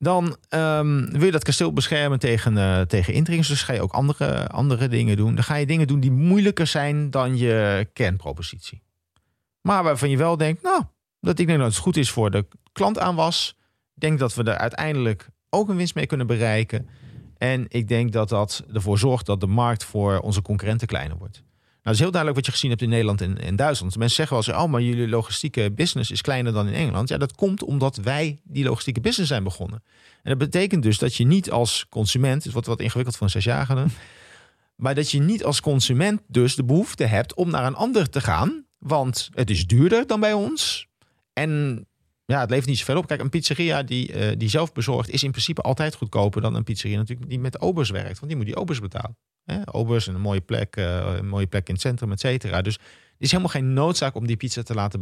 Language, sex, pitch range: Dutch, male, 110-150 Hz